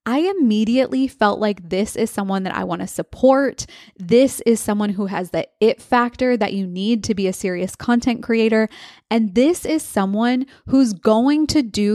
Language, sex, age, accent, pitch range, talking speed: English, female, 20-39, American, 200-255 Hz, 185 wpm